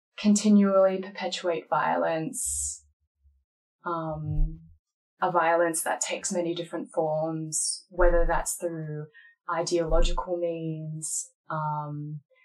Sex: female